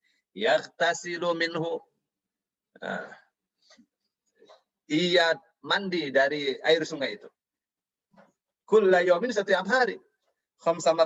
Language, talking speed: Indonesian, 70 wpm